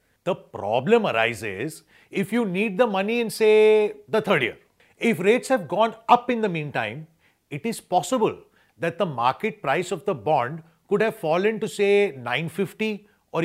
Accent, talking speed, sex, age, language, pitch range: Indian, 170 wpm, male, 40-59, English, 165-230 Hz